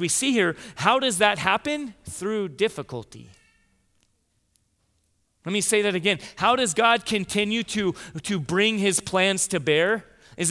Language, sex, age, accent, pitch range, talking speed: English, male, 30-49, American, 135-210 Hz, 150 wpm